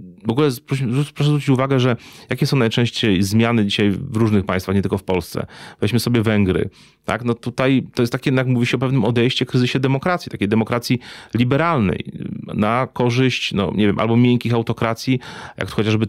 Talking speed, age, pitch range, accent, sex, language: 185 wpm, 30-49, 110-130 Hz, native, male, Polish